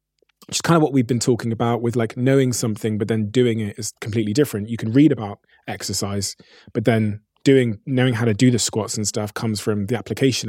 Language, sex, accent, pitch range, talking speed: English, male, British, 110-135 Hz, 230 wpm